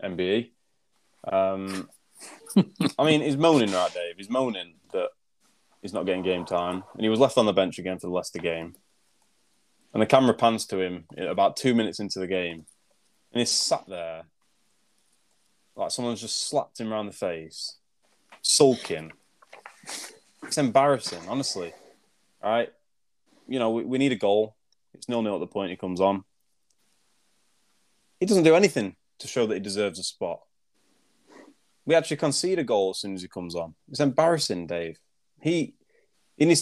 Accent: British